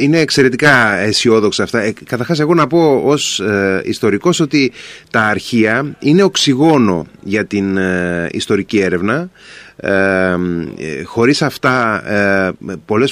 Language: Greek